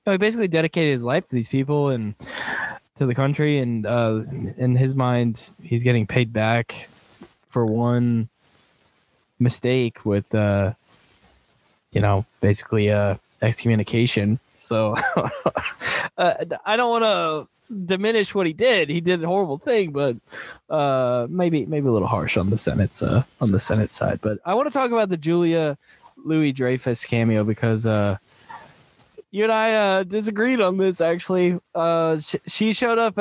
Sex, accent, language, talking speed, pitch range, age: male, American, English, 160 wpm, 110-155 Hz, 10-29